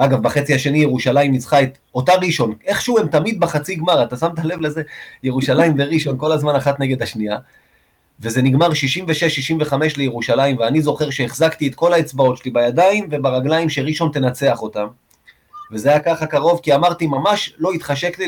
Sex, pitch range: male, 130-165 Hz